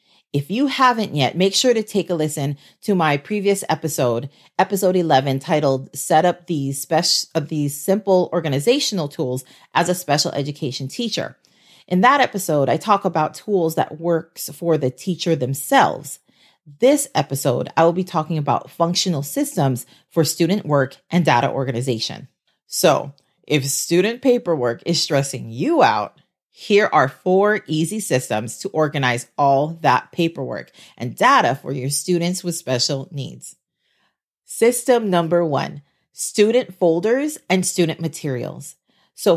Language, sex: English, female